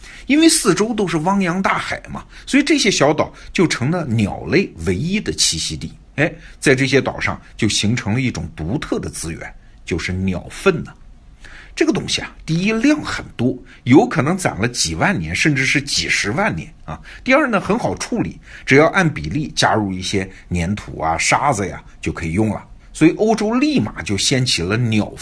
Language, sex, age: Chinese, male, 50-69